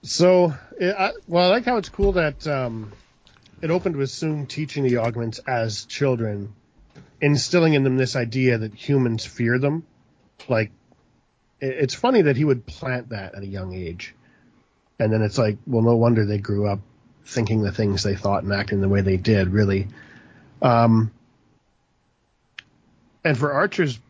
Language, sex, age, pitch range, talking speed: English, male, 40-59, 115-140 Hz, 160 wpm